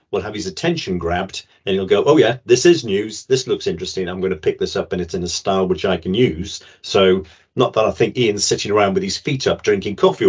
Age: 50-69